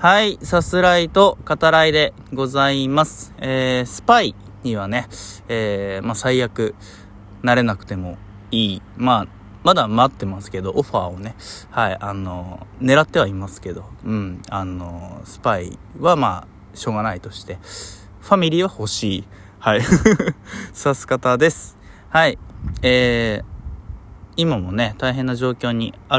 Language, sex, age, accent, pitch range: Japanese, male, 20-39, native, 100-135 Hz